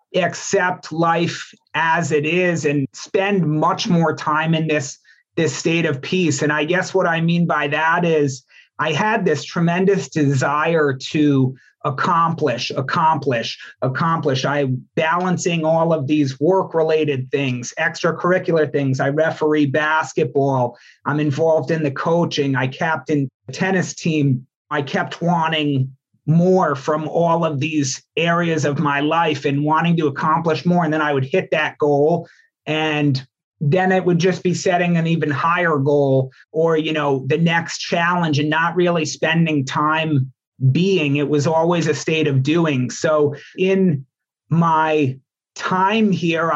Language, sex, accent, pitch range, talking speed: English, male, American, 145-170 Hz, 150 wpm